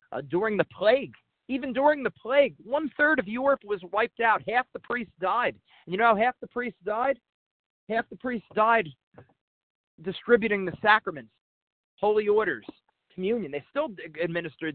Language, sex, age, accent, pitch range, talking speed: English, male, 40-59, American, 155-215 Hz, 160 wpm